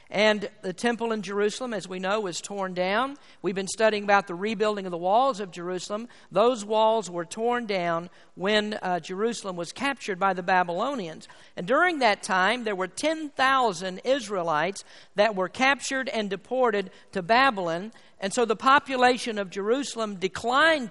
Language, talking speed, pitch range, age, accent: English, 165 wpm, 195-250 Hz, 50-69, American